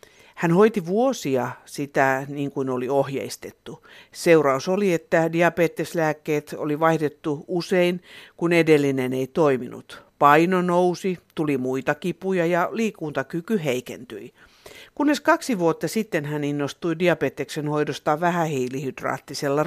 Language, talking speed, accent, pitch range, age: Finnish, 110 wpm, native, 140-190 Hz, 60-79